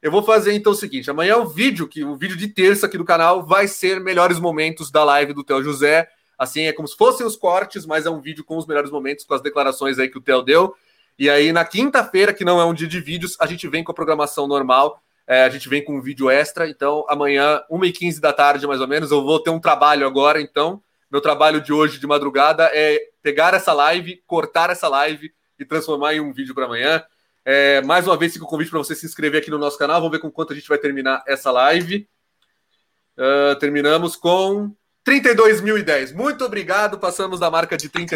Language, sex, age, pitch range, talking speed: Portuguese, male, 30-49, 145-180 Hz, 235 wpm